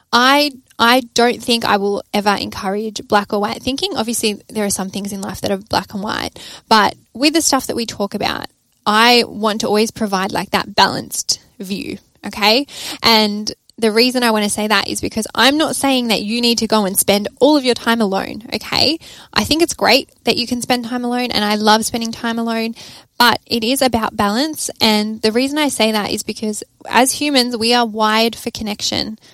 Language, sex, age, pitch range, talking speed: English, female, 10-29, 210-245 Hz, 215 wpm